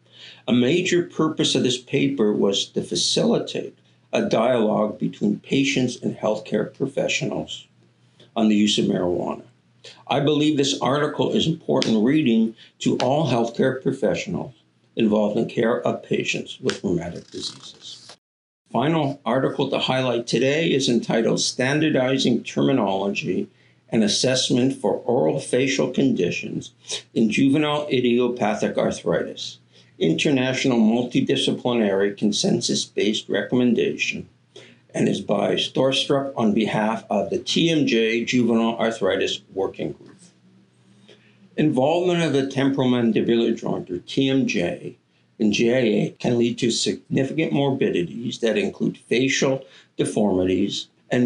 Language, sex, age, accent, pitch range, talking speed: English, male, 60-79, American, 100-135 Hz, 110 wpm